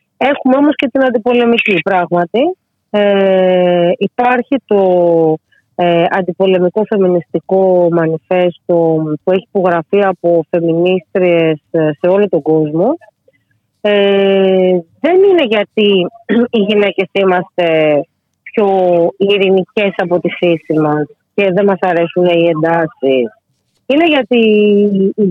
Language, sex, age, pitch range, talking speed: Greek, female, 30-49, 170-225 Hz, 105 wpm